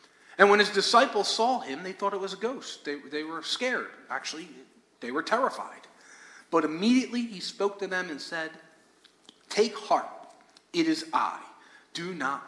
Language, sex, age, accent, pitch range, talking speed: English, male, 40-59, American, 170-255 Hz, 170 wpm